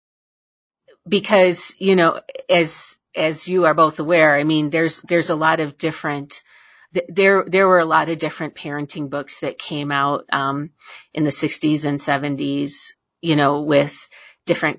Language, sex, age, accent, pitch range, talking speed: English, female, 40-59, American, 150-180 Hz, 160 wpm